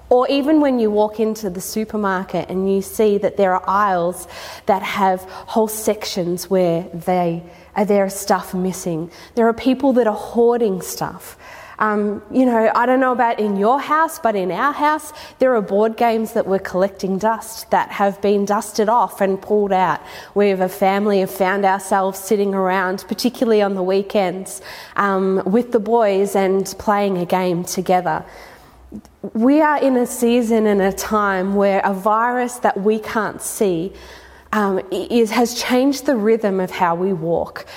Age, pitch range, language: 20-39, 190-235 Hz, English